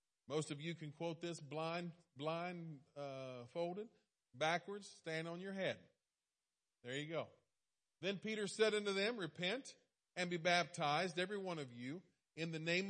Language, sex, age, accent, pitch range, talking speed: English, male, 40-59, American, 150-195 Hz, 155 wpm